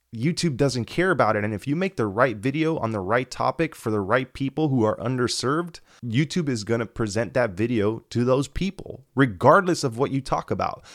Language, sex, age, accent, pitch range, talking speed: English, male, 20-39, American, 110-140 Hz, 215 wpm